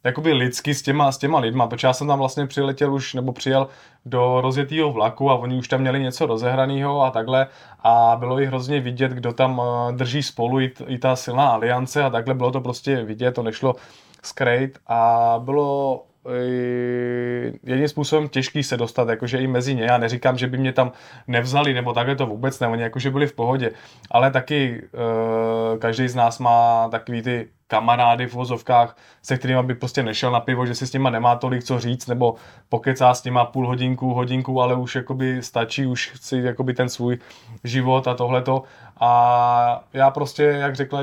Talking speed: 185 wpm